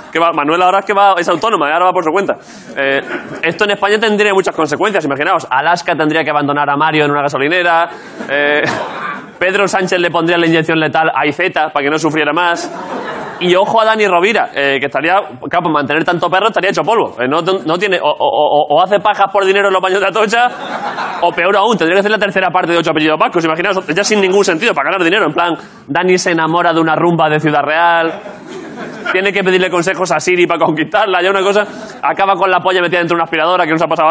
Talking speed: 240 wpm